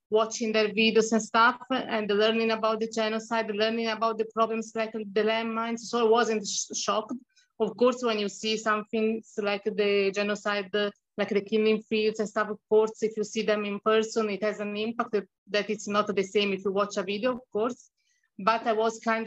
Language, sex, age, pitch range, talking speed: English, female, 20-39, 210-230 Hz, 210 wpm